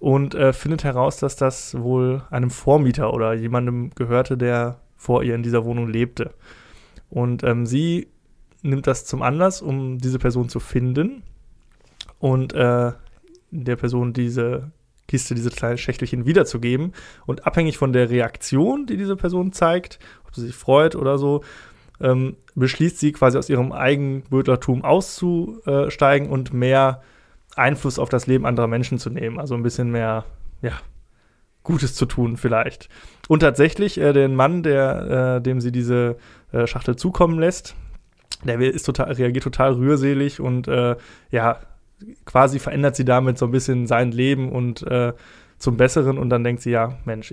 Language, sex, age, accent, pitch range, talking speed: German, male, 20-39, German, 120-140 Hz, 160 wpm